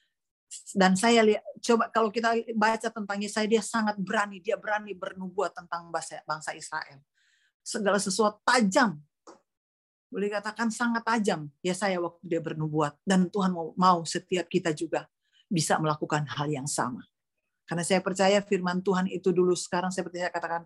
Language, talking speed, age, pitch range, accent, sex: Indonesian, 155 wpm, 40-59, 185-290 Hz, native, female